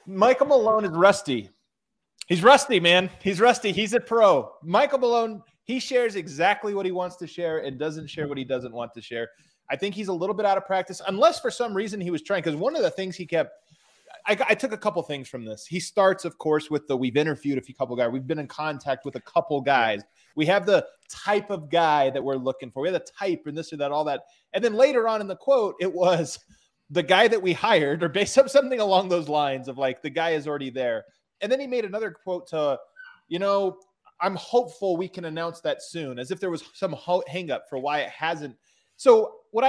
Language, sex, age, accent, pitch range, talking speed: English, male, 30-49, American, 145-200 Hz, 240 wpm